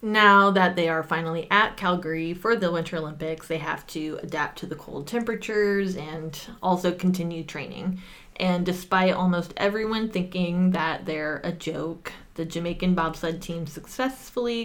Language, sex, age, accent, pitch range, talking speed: English, female, 20-39, American, 165-200 Hz, 150 wpm